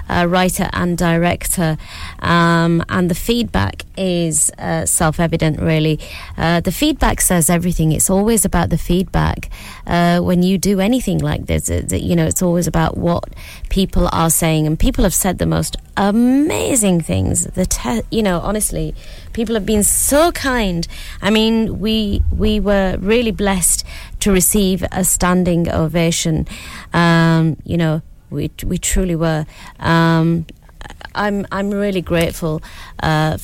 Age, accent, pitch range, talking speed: 30-49, British, 155-195 Hz, 145 wpm